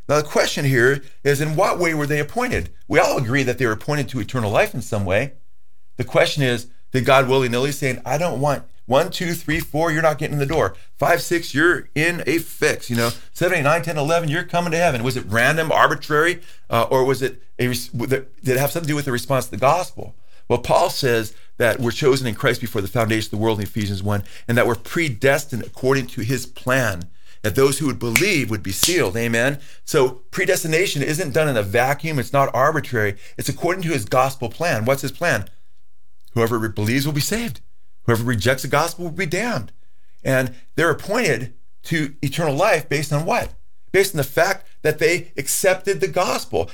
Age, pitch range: 40-59, 120-160 Hz